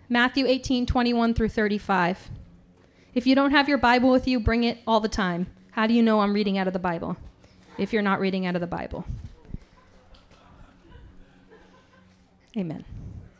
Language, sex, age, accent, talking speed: English, female, 20-39, American, 165 wpm